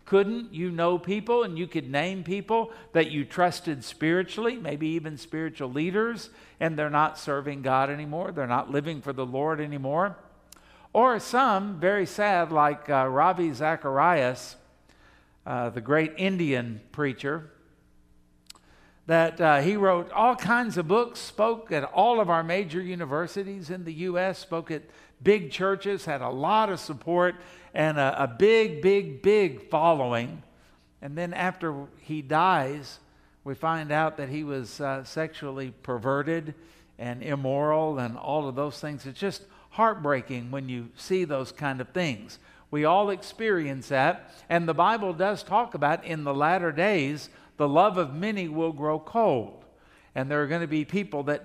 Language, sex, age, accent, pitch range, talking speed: English, male, 60-79, American, 140-185 Hz, 160 wpm